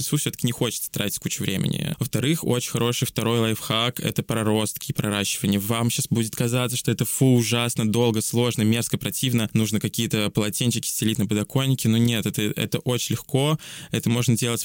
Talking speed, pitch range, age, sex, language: 175 wpm, 105-125 Hz, 20-39, male, Russian